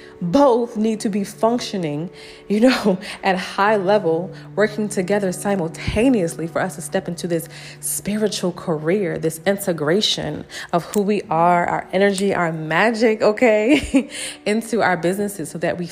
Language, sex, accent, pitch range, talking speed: English, female, American, 160-205 Hz, 145 wpm